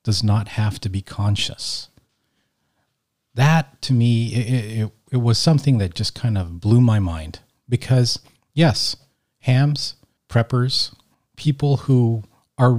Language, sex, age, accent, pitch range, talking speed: English, male, 40-59, American, 105-130 Hz, 125 wpm